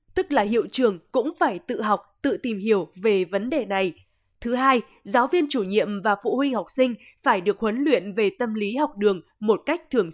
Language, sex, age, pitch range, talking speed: Vietnamese, female, 20-39, 200-270 Hz, 225 wpm